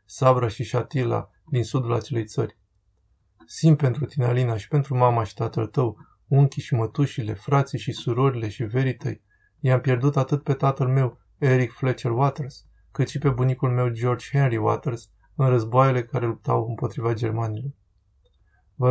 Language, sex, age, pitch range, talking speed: Romanian, male, 20-39, 115-135 Hz, 155 wpm